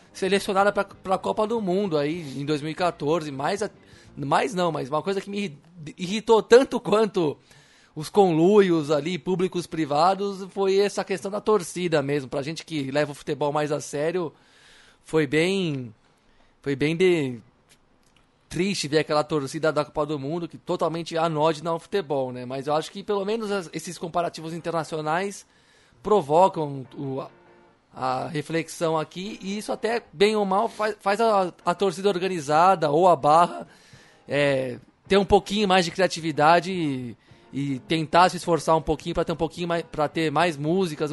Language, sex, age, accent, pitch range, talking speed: Portuguese, male, 20-39, Brazilian, 150-190 Hz, 160 wpm